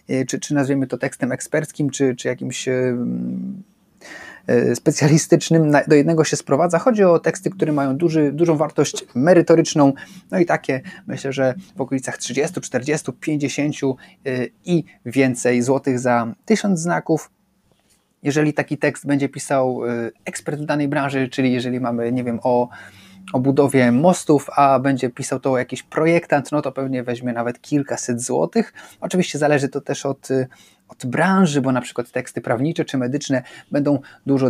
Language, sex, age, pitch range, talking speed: Polish, male, 30-49, 125-150 Hz, 150 wpm